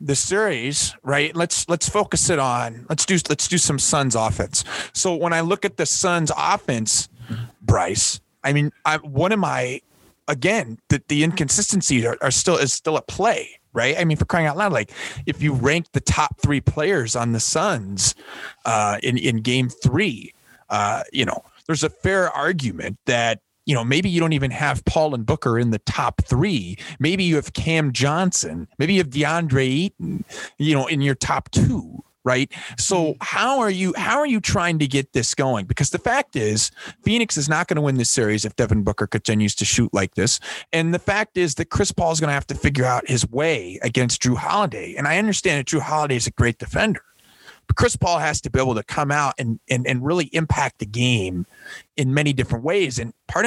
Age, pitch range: 30-49, 120-165 Hz